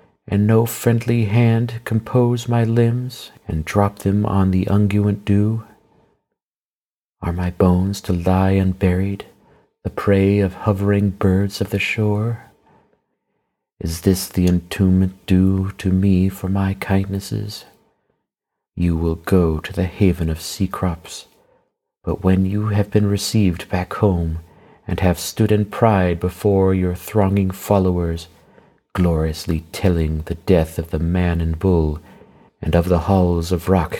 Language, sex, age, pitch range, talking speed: English, male, 40-59, 85-100 Hz, 140 wpm